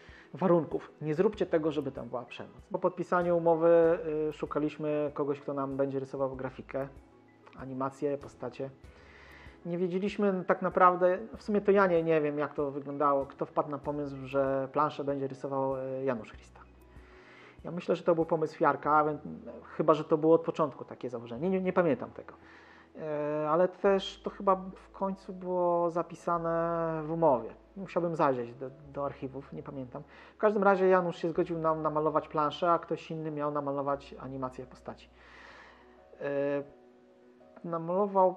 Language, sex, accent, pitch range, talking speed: Polish, male, native, 135-170 Hz, 155 wpm